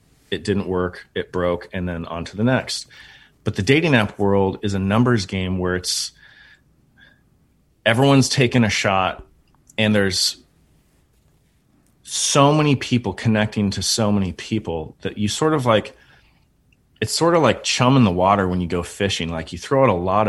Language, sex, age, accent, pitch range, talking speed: English, male, 30-49, American, 95-125 Hz, 175 wpm